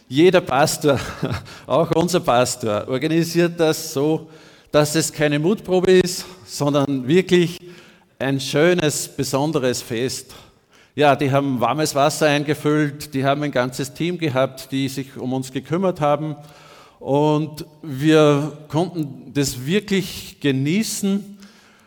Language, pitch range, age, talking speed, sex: German, 135-170 Hz, 50-69, 120 wpm, male